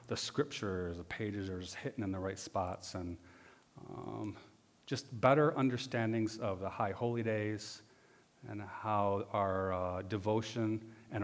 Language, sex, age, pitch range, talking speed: English, male, 40-59, 100-120 Hz, 145 wpm